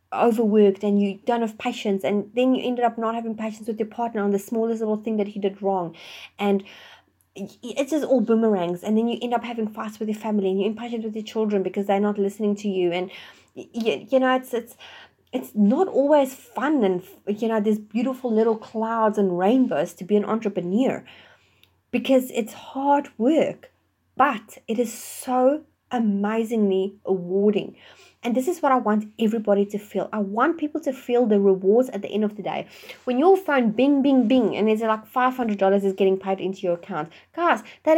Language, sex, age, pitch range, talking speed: English, female, 30-49, 200-245 Hz, 200 wpm